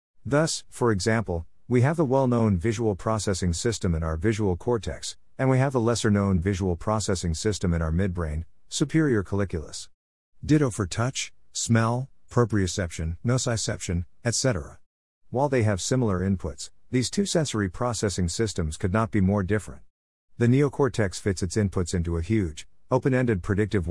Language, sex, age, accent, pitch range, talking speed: English, male, 50-69, American, 90-120 Hz, 150 wpm